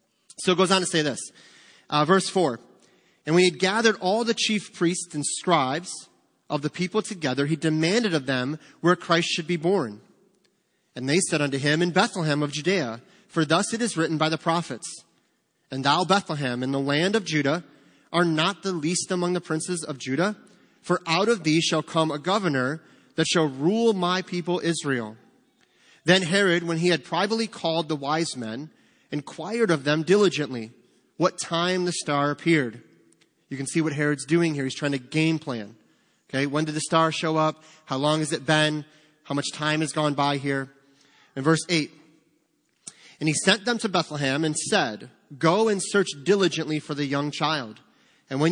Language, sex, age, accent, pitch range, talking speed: English, male, 30-49, American, 150-180 Hz, 190 wpm